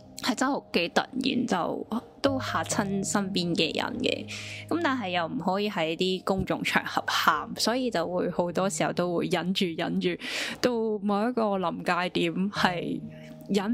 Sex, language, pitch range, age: female, Chinese, 165-225 Hz, 10-29